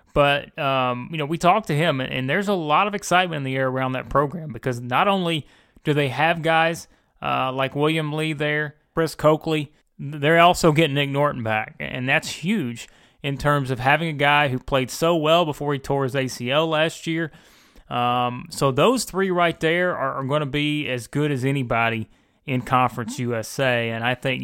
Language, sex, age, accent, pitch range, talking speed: English, male, 30-49, American, 135-170 Hz, 195 wpm